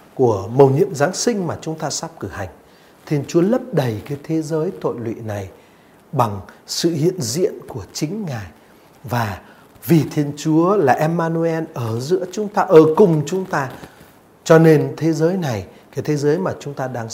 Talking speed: 190 wpm